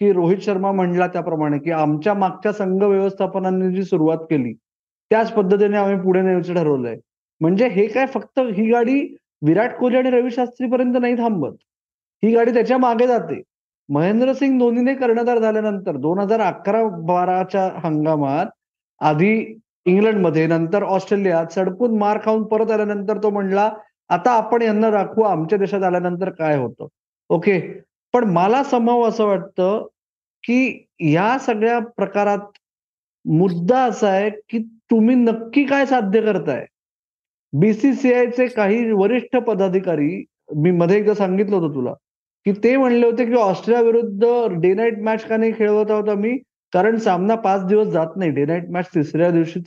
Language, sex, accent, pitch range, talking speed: Marathi, male, native, 180-230 Hz, 120 wpm